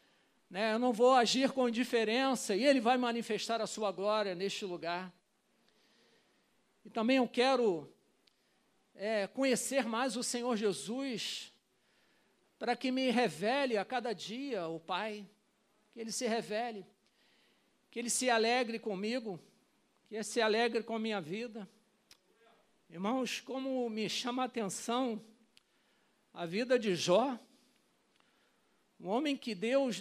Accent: Brazilian